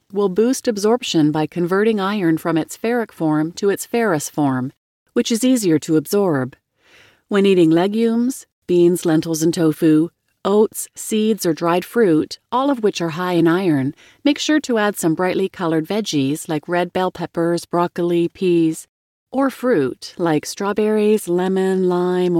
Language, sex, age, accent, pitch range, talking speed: English, female, 30-49, American, 165-225 Hz, 155 wpm